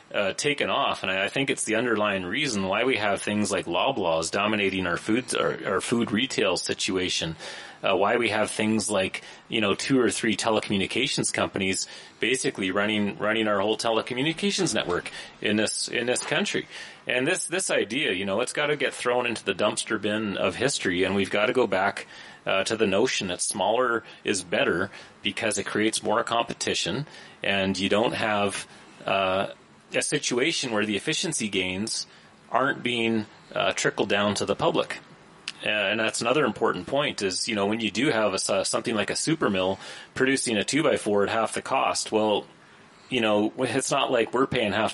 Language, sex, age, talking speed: English, male, 30-49, 185 wpm